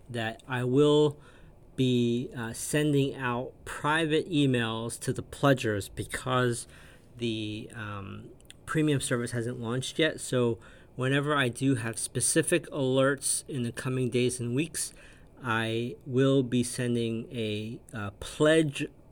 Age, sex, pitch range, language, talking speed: 40-59, male, 115-135 Hz, English, 125 wpm